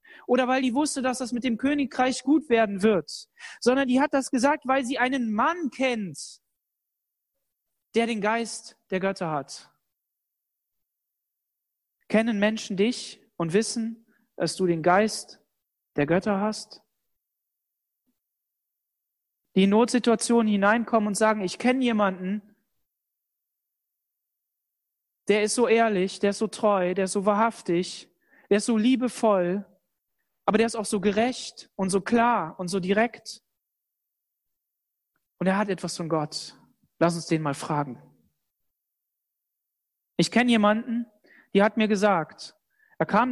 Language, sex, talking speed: German, male, 135 wpm